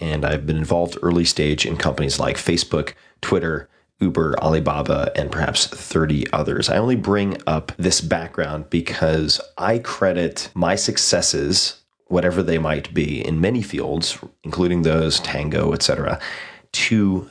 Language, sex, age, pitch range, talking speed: English, male, 30-49, 80-95 Hz, 140 wpm